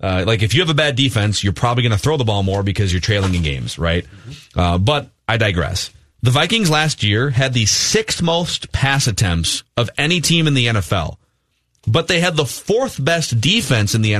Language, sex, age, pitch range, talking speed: English, male, 30-49, 110-155 Hz, 210 wpm